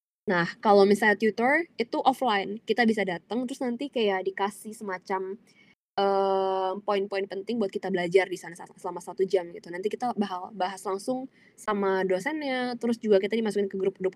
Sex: female